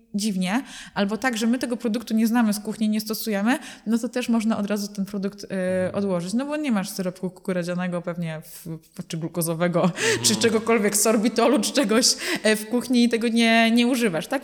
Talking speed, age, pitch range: 195 wpm, 20-39, 190-230 Hz